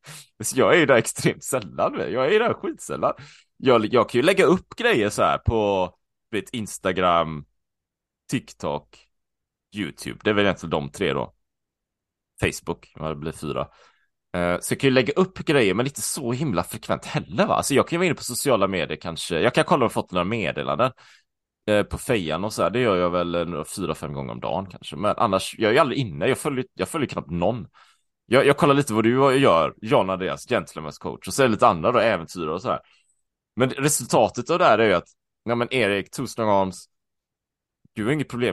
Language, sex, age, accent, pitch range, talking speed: Swedish, male, 20-39, Norwegian, 90-135 Hz, 215 wpm